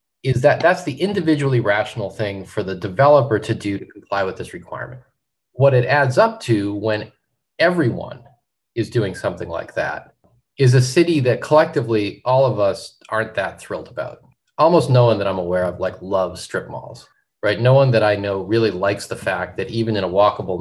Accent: American